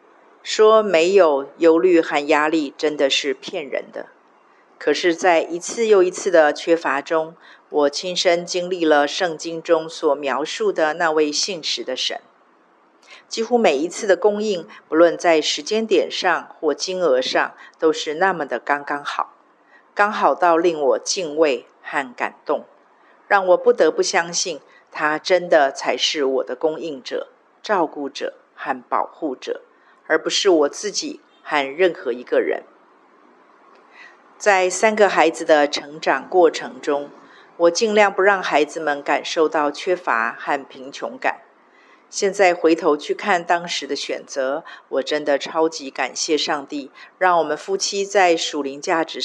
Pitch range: 150-210 Hz